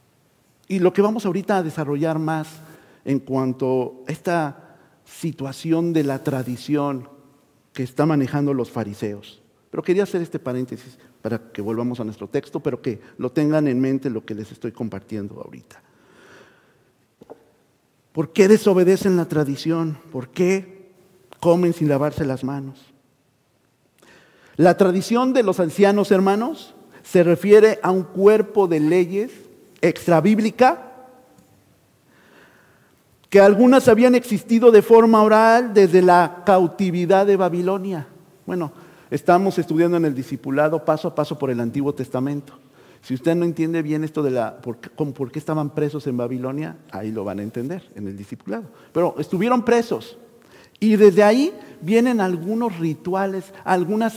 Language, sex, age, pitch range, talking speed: Spanish, male, 50-69, 135-195 Hz, 145 wpm